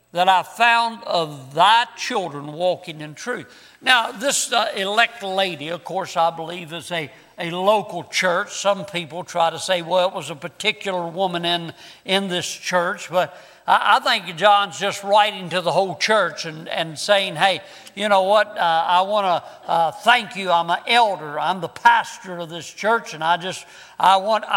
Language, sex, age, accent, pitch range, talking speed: English, male, 60-79, American, 175-235 Hz, 190 wpm